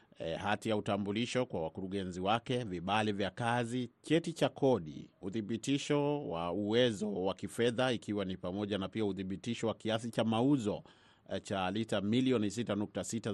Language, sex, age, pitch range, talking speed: Swahili, male, 30-49, 95-110 Hz, 150 wpm